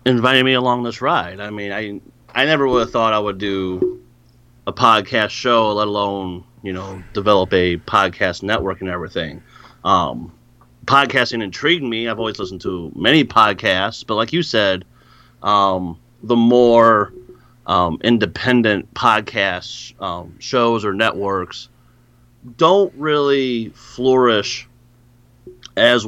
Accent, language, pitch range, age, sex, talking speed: American, English, 90-120 Hz, 30-49, male, 130 wpm